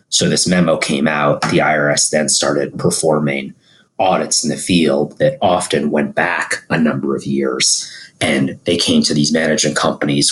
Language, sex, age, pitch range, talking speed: English, male, 30-49, 75-85 Hz, 170 wpm